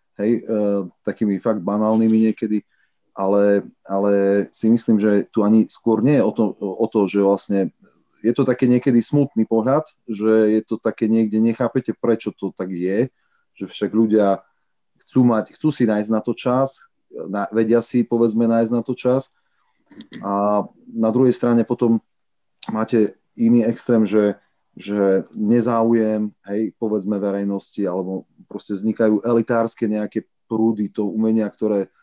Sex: male